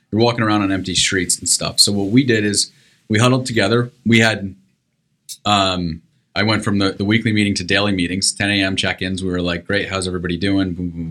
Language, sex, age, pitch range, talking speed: English, male, 30-49, 95-125 Hz, 215 wpm